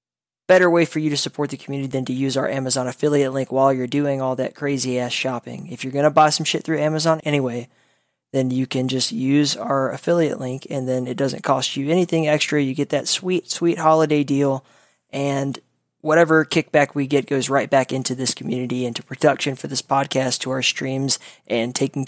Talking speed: 205 wpm